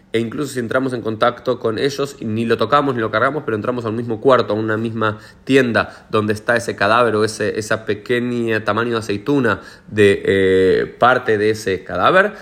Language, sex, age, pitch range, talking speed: Spanish, male, 30-49, 105-130 Hz, 195 wpm